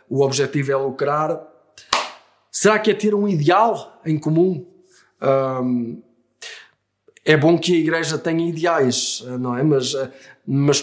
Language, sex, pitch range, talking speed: Portuguese, male, 140-170 Hz, 115 wpm